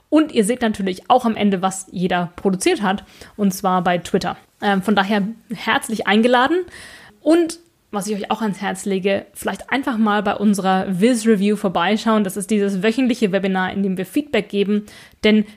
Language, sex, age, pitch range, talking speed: German, female, 20-39, 200-245 Hz, 175 wpm